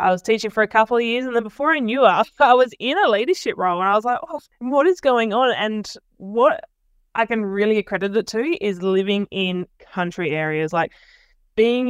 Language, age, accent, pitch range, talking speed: English, 10-29, Australian, 175-225 Hz, 215 wpm